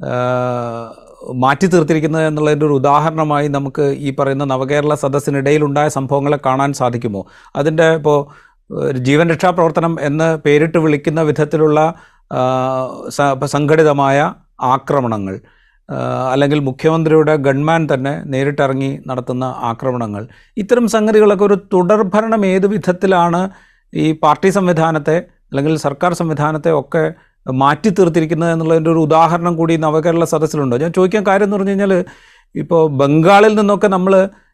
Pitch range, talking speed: 145-190 Hz, 105 wpm